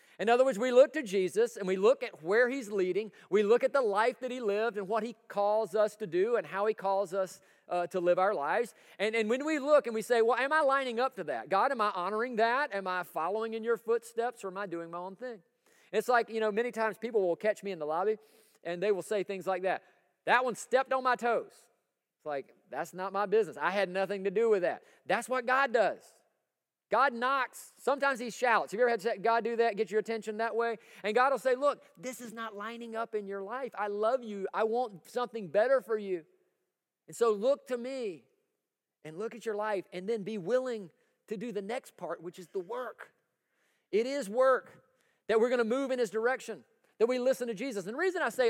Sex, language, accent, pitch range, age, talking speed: male, English, American, 205-255 Hz, 40-59, 245 wpm